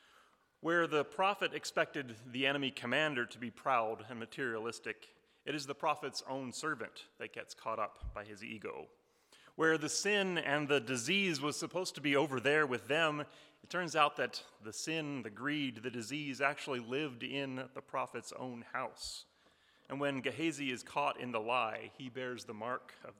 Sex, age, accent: male, 30-49, American